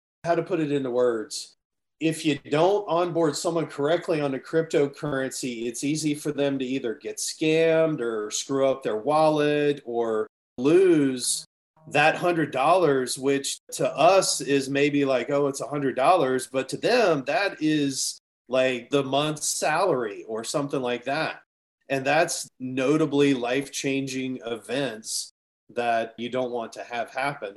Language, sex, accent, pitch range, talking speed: English, male, American, 120-150 Hz, 145 wpm